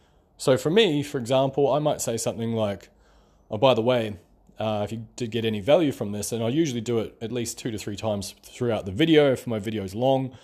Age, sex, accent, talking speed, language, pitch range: 20-39, male, Australian, 245 wpm, English, 105-135 Hz